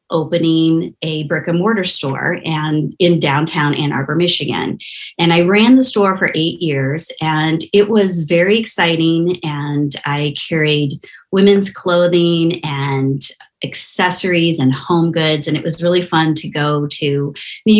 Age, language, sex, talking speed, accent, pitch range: 30-49, English, female, 140 wpm, American, 155-185 Hz